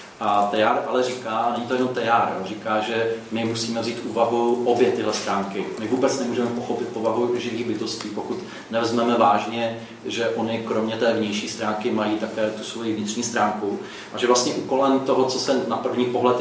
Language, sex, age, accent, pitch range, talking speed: Czech, male, 30-49, native, 110-125 Hz, 185 wpm